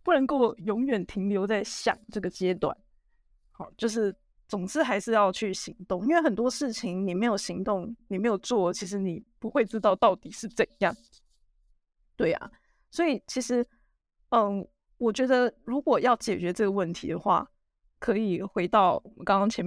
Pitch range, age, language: 190-240 Hz, 20-39, Chinese